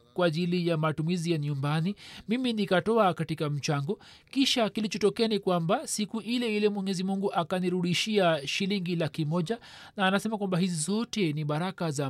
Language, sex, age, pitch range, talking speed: Swahili, male, 40-59, 150-180 Hz, 150 wpm